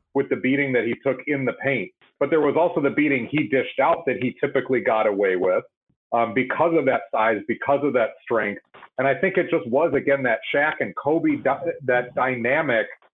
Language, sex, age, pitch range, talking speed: English, male, 40-59, 125-155 Hz, 210 wpm